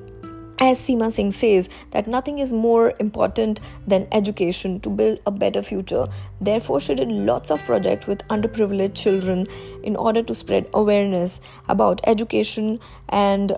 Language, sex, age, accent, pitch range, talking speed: Hindi, female, 20-39, native, 190-230 Hz, 145 wpm